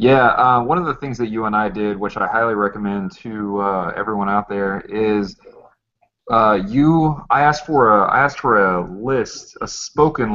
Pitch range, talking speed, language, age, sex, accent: 100-120 Hz, 195 wpm, English, 20-39, male, American